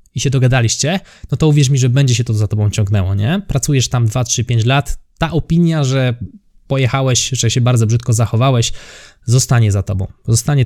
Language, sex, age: Polish, male, 20-39